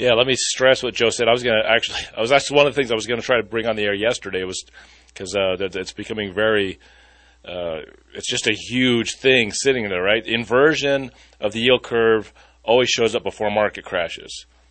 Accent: American